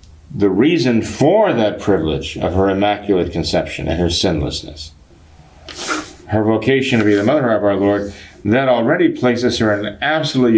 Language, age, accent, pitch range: English, 50-69, American, 95-125 Hz